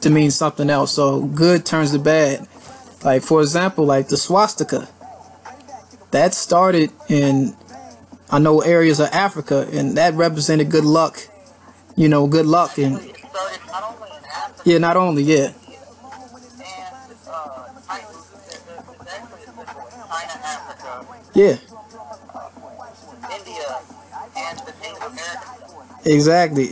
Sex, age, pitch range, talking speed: male, 20-39, 145-180 Hz, 90 wpm